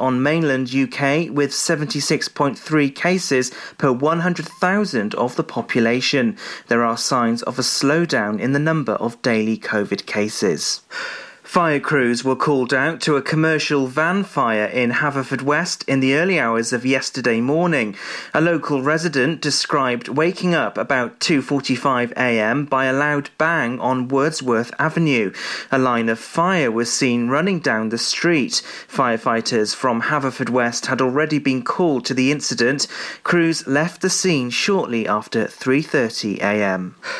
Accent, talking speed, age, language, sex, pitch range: British, 140 wpm, 30-49, English, male, 125-160 Hz